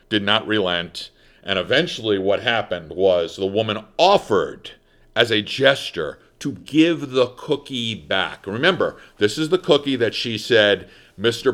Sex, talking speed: male, 145 wpm